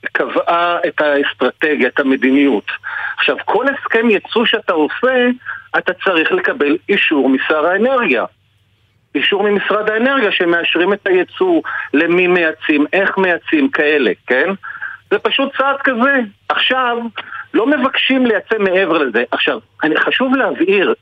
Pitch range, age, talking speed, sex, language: 175-270 Hz, 50-69, 125 wpm, male, Hebrew